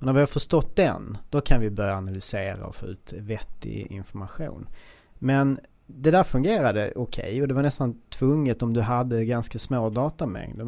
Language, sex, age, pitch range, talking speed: English, male, 40-59, 110-140 Hz, 175 wpm